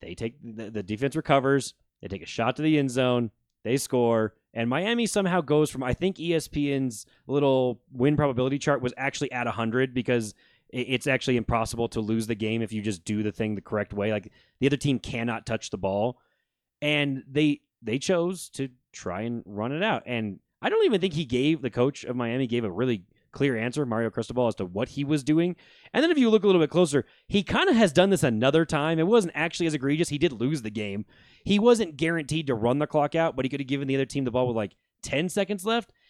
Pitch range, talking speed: 115-155 Hz, 235 wpm